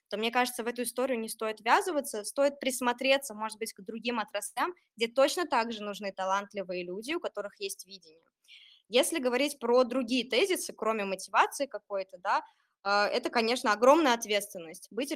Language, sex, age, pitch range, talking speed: Russian, female, 20-39, 205-255 Hz, 160 wpm